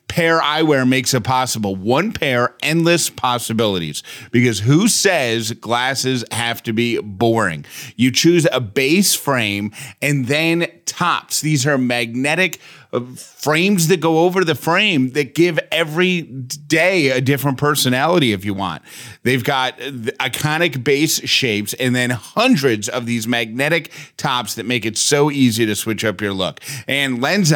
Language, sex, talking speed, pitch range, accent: English, male, 150 wpm, 115-150 Hz, American